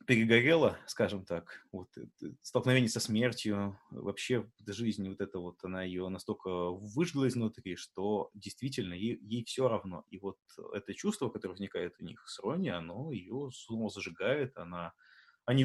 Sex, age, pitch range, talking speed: male, 30-49, 105-135 Hz, 155 wpm